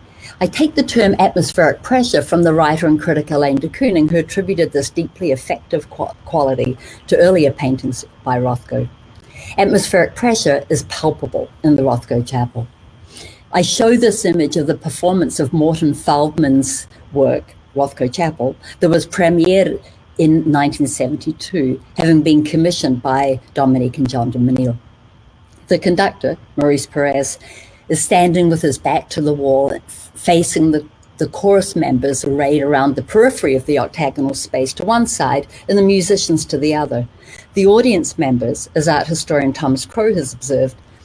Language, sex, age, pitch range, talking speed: English, female, 60-79, 130-175 Hz, 150 wpm